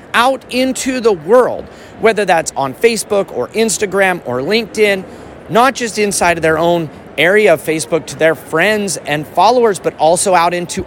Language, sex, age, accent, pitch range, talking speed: English, male, 30-49, American, 165-220 Hz, 165 wpm